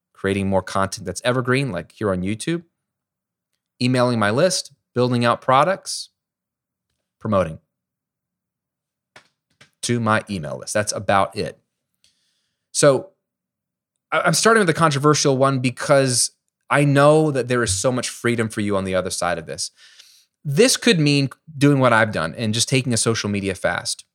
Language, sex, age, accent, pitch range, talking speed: English, male, 20-39, American, 115-145 Hz, 150 wpm